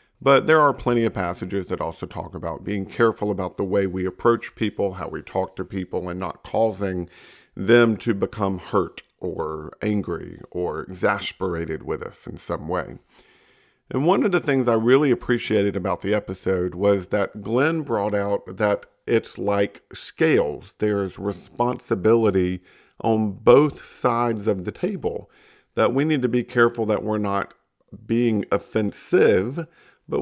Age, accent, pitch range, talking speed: 50-69, American, 95-125 Hz, 155 wpm